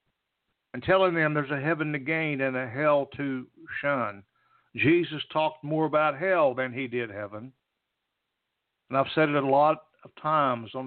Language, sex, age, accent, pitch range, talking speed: English, male, 60-79, American, 130-170 Hz, 170 wpm